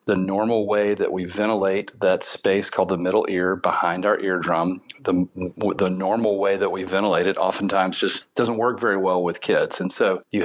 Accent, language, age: American, English, 40-59